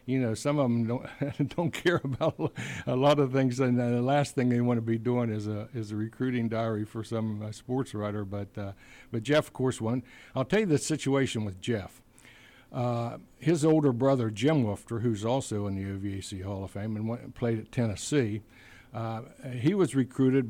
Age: 60-79